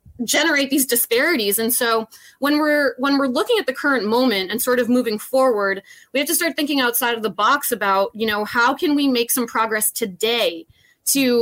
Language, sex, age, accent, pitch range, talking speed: English, female, 20-39, American, 225-285 Hz, 205 wpm